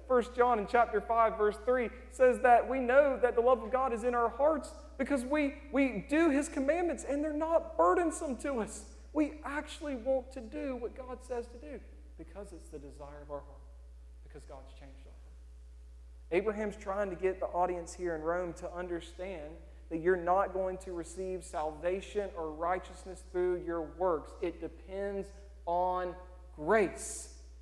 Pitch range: 160-240 Hz